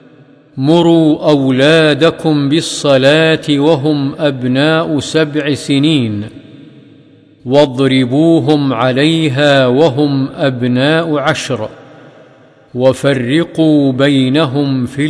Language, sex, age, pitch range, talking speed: Arabic, male, 50-69, 130-155 Hz, 60 wpm